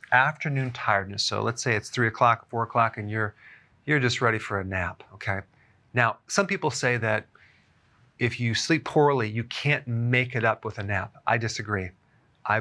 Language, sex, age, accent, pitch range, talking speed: English, male, 40-59, American, 105-130 Hz, 185 wpm